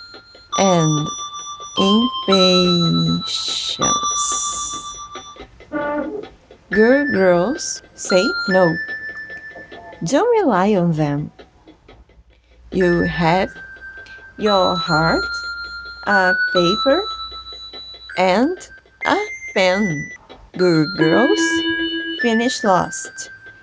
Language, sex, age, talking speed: English, female, 30-49, 60 wpm